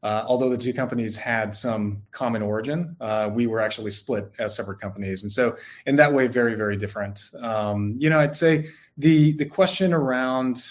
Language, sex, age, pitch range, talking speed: English, male, 20-39, 110-140 Hz, 190 wpm